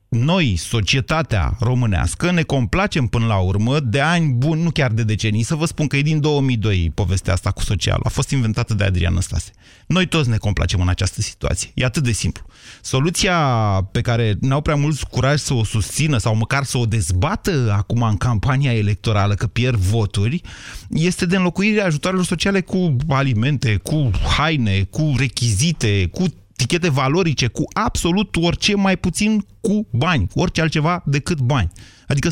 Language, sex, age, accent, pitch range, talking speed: Romanian, male, 30-49, native, 105-155 Hz, 170 wpm